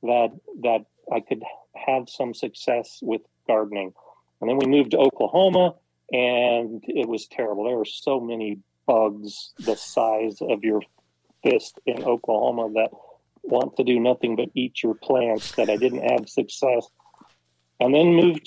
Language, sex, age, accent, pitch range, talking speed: English, male, 40-59, American, 115-140 Hz, 155 wpm